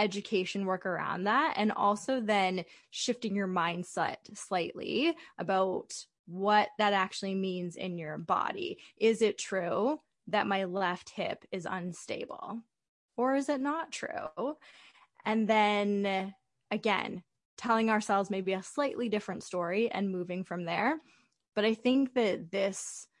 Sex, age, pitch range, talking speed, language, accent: female, 20-39, 185-215 Hz, 135 wpm, English, American